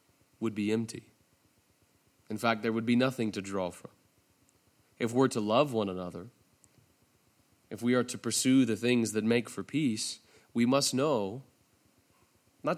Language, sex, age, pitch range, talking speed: English, male, 30-49, 105-125 Hz, 155 wpm